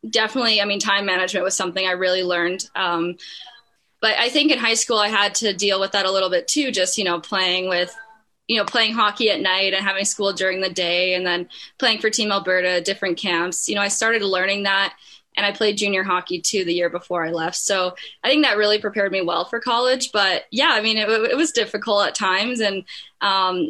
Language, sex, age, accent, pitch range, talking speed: English, female, 10-29, American, 185-220 Hz, 230 wpm